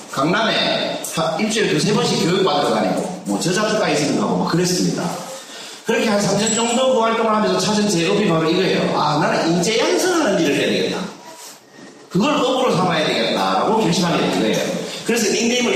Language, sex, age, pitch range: Korean, male, 40-59, 165-230 Hz